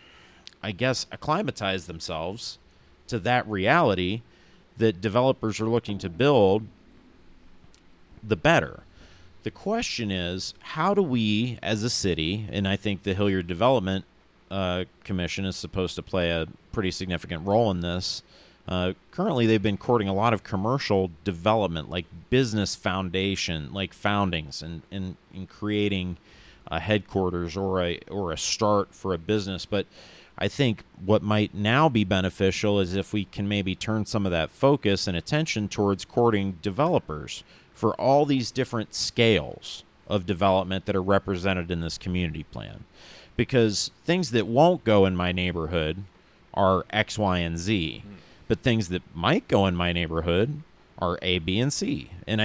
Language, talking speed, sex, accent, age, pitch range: English, 155 wpm, male, American, 40-59, 90-110 Hz